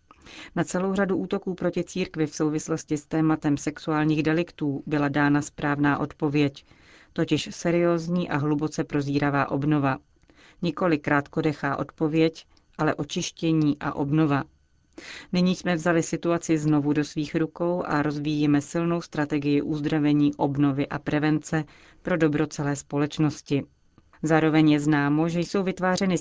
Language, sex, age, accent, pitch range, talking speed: Czech, female, 40-59, native, 145-165 Hz, 125 wpm